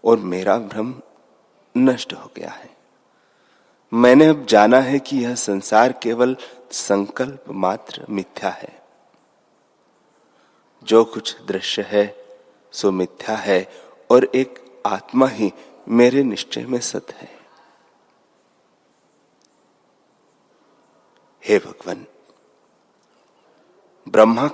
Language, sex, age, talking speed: Hindi, male, 30-49, 95 wpm